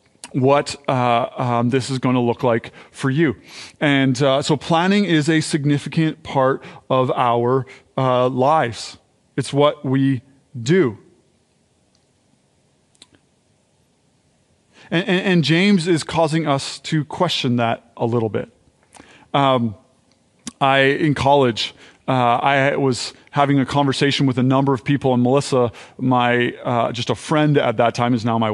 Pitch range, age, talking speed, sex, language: 130-155 Hz, 30-49, 145 wpm, male, English